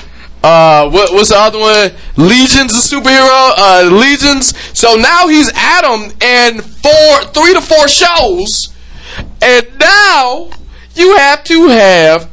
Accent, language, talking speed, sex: American, English, 130 wpm, male